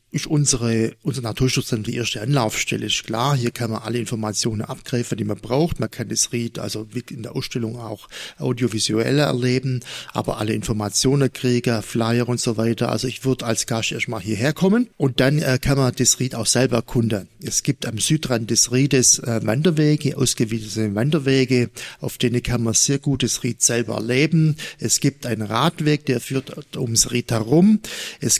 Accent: German